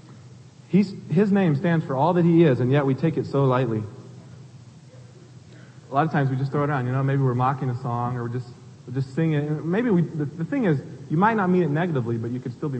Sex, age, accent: male, 30-49, American